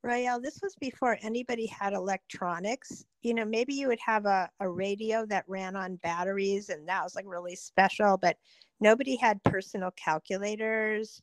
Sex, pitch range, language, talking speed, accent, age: female, 185-220 Hz, English, 165 wpm, American, 50-69